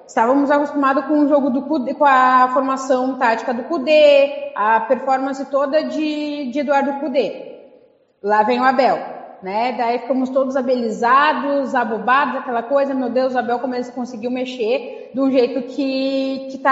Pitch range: 230-280 Hz